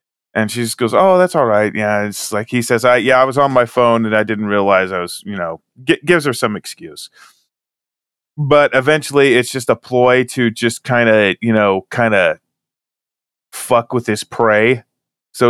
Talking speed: 200 wpm